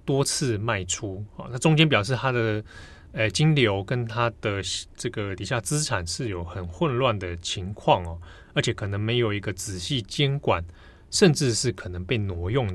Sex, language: male, Chinese